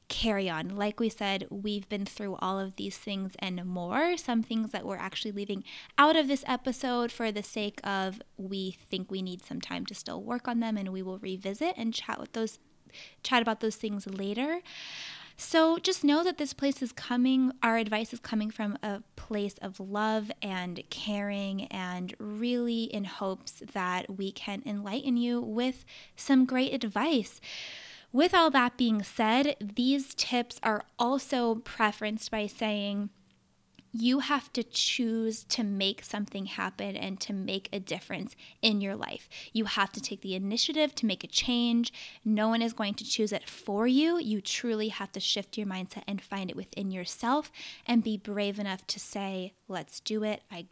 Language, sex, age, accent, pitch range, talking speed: English, female, 20-39, American, 195-240 Hz, 180 wpm